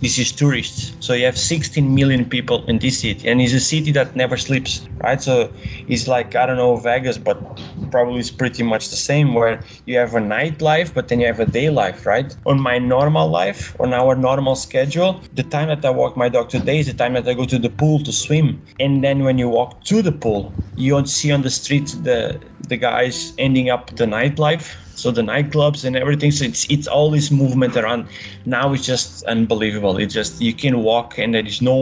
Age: 20-39